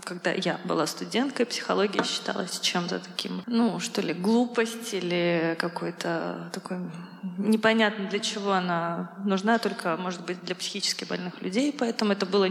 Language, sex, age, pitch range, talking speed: Russian, female, 20-39, 190-235 Hz, 145 wpm